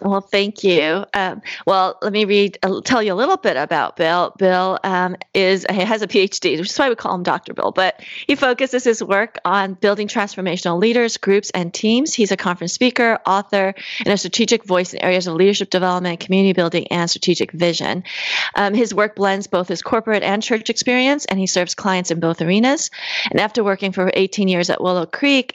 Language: English